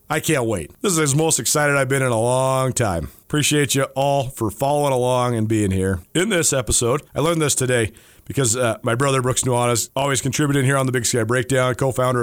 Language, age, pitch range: English, 40-59, 120-155 Hz